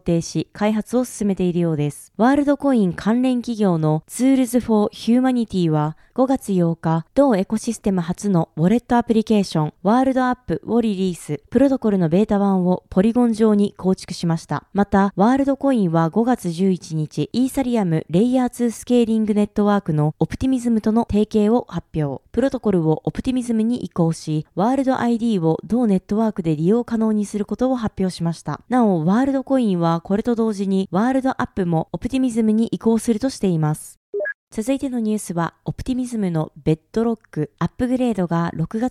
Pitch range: 170-235 Hz